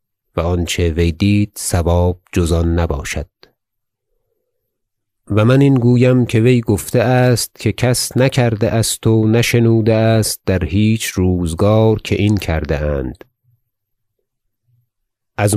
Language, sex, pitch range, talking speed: Persian, male, 95-115 Hz, 115 wpm